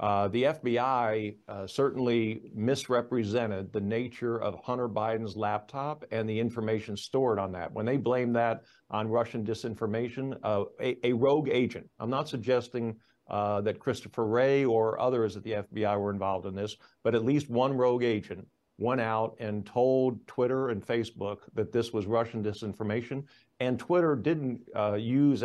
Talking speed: 165 wpm